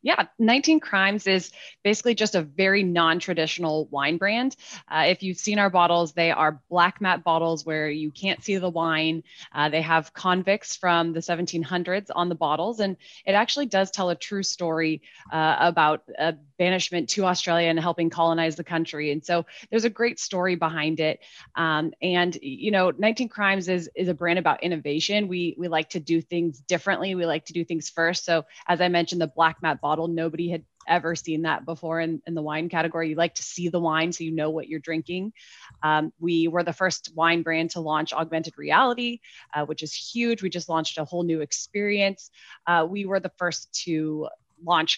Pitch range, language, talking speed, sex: 160-185 Hz, English, 200 wpm, female